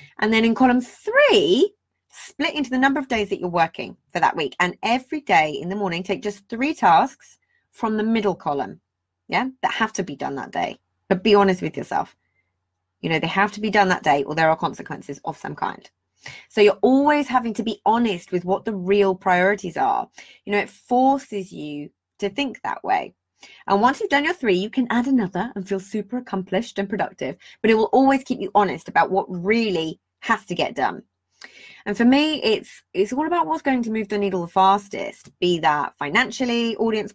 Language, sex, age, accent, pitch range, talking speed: English, female, 30-49, British, 170-235 Hz, 210 wpm